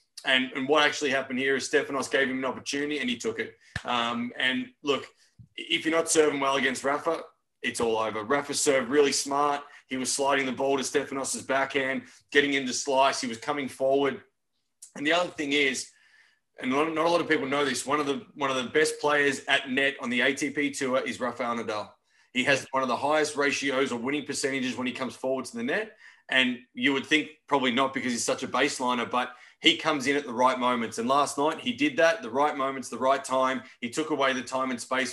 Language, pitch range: English, 125-145 Hz